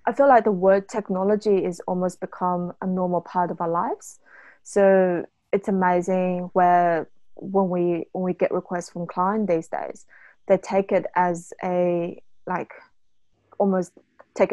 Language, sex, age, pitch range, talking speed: English, female, 20-39, 175-200 Hz, 155 wpm